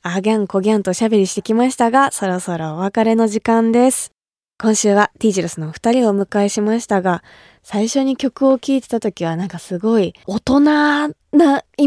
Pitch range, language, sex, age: 180-245 Hz, Japanese, female, 20-39